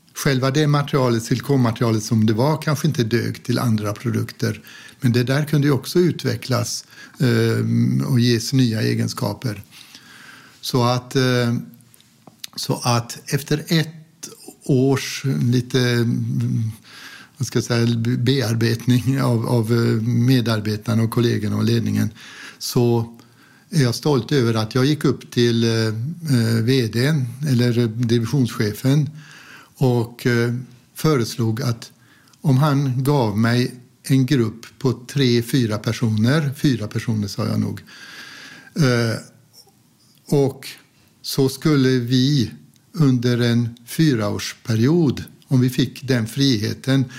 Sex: male